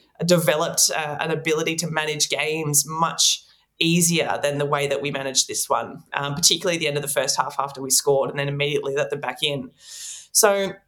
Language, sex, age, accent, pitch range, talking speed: English, female, 20-39, Australian, 145-185 Hz, 200 wpm